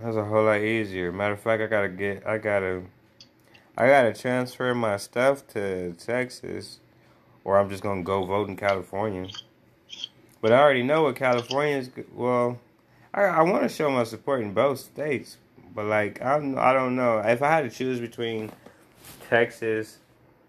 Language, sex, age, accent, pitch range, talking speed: English, male, 20-39, American, 90-115 Hz, 170 wpm